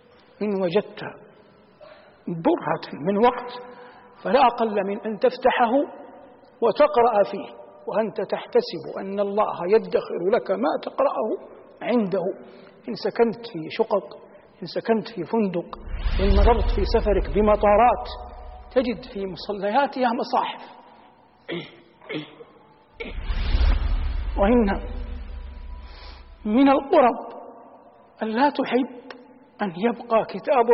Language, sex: Arabic, male